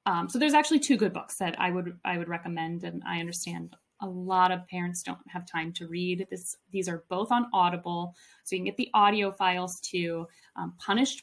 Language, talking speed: English, 220 wpm